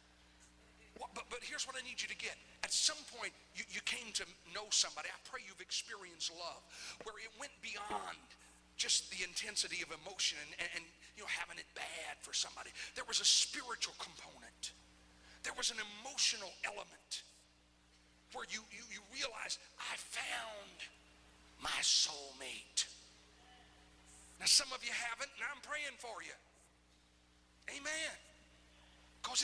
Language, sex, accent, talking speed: English, male, American, 150 wpm